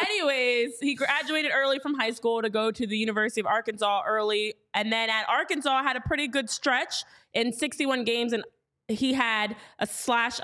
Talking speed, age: 185 wpm, 20-39